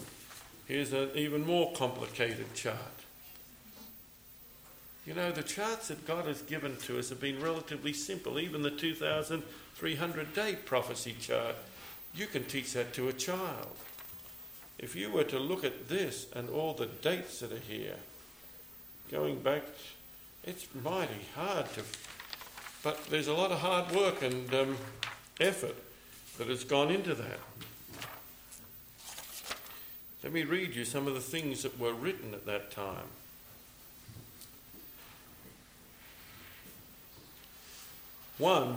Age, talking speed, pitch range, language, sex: 60-79, 130 wpm, 130-175 Hz, English, male